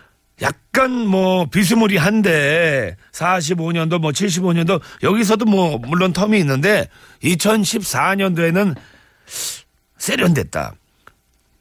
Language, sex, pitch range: Korean, male, 125-195 Hz